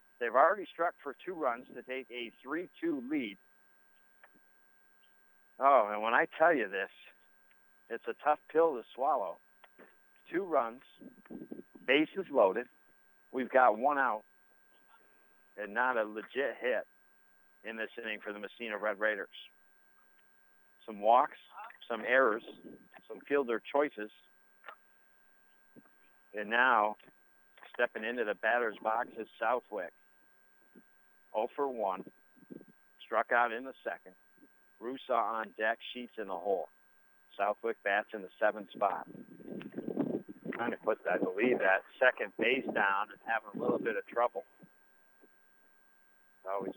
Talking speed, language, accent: 130 wpm, English, American